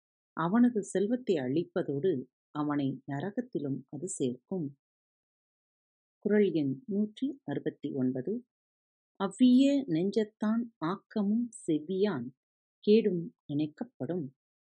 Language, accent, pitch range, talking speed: Tamil, native, 150-220 Hz, 75 wpm